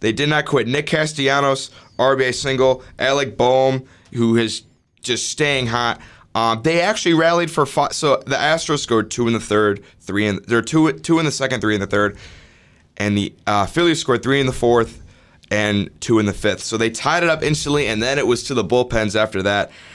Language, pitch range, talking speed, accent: English, 105-130 Hz, 210 wpm, American